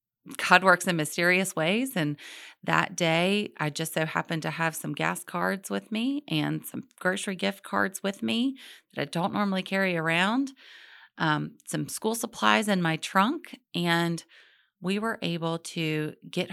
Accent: American